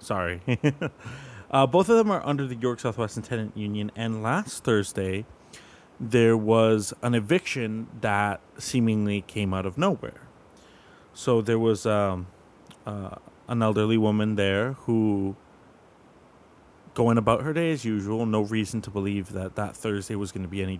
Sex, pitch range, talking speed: male, 100-120 Hz, 155 wpm